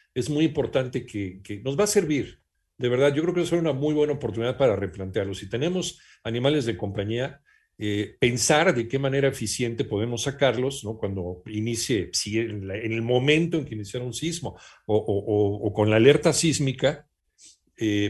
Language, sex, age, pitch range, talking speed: Spanish, male, 50-69, 115-150 Hz, 190 wpm